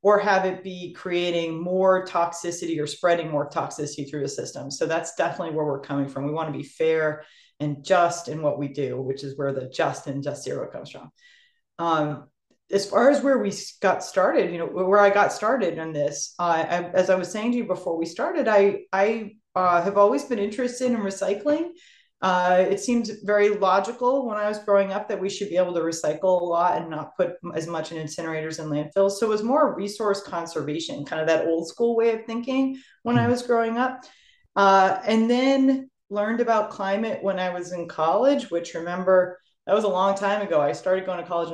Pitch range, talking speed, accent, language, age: 160-205 Hz, 215 wpm, American, English, 30-49